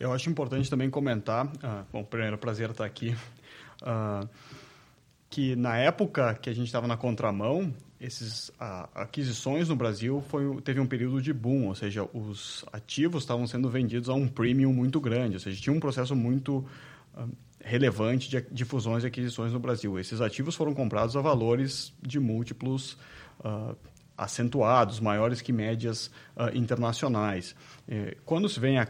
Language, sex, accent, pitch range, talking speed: Portuguese, male, Brazilian, 115-140 Hz, 165 wpm